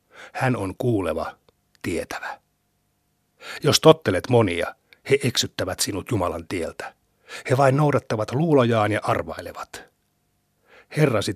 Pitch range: 105-135 Hz